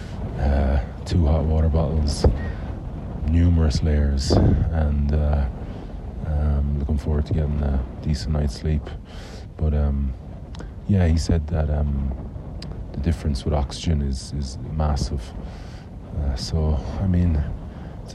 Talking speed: 120 wpm